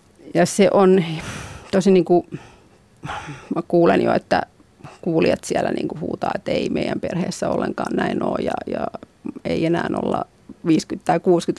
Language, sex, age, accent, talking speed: Finnish, female, 30-49, native, 145 wpm